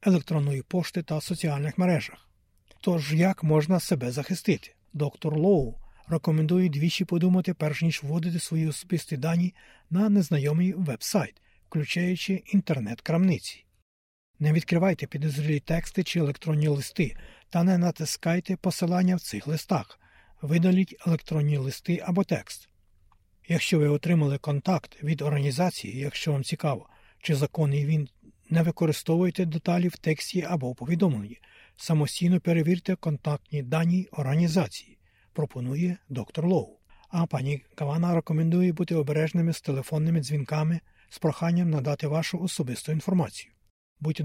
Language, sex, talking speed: Ukrainian, male, 120 wpm